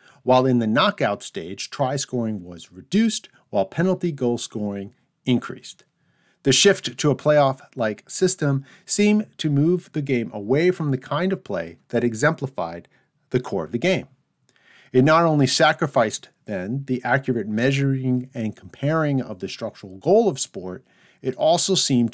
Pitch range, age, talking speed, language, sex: 110-150 Hz, 50-69, 155 wpm, English, male